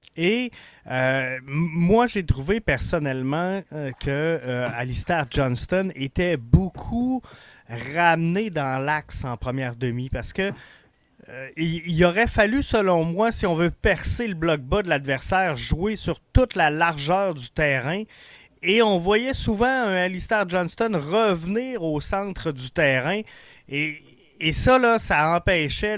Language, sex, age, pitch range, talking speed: French, male, 30-49, 140-195 Hz, 145 wpm